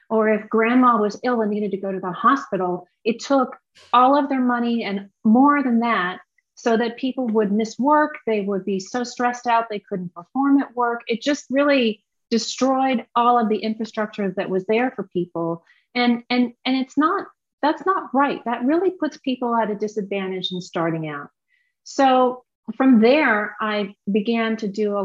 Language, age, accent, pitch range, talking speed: English, 30-49, American, 185-250 Hz, 185 wpm